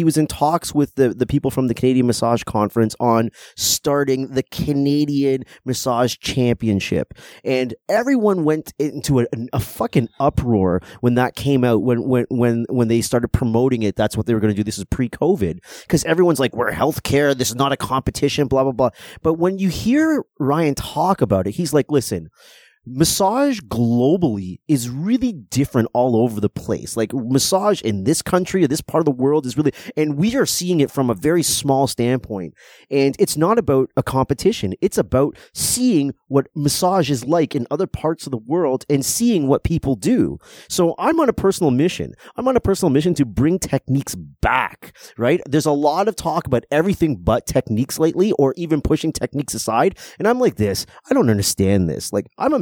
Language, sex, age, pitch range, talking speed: English, male, 30-49, 120-160 Hz, 195 wpm